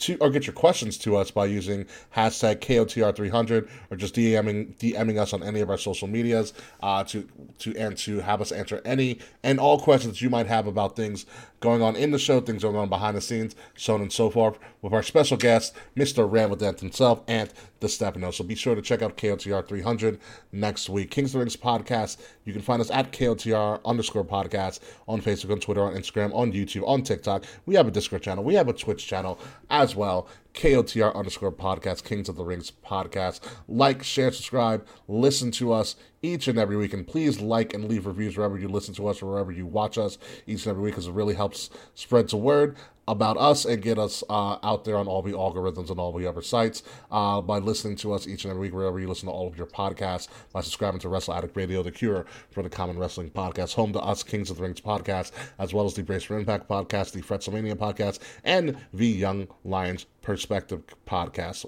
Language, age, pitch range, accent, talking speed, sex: English, 30-49, 100-115 Hz, American, 220 wpm, male